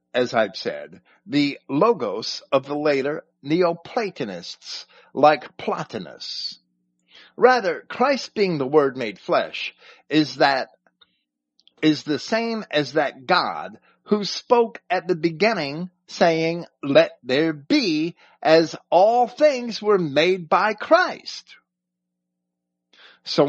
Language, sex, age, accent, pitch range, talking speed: English, male, 50-69, American, 125-210 Hz, 110 wpm